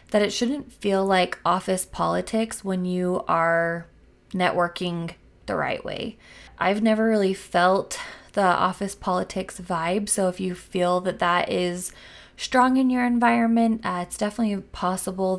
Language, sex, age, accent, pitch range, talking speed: English, female, 20-39, American, 180-210 Hz, 145 wpm